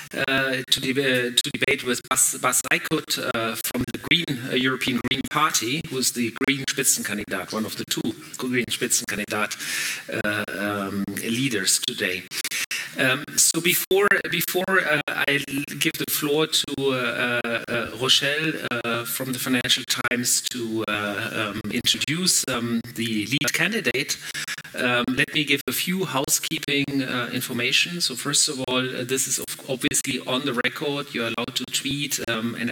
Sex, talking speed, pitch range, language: male, 155 wpm, 125-150 Hz, English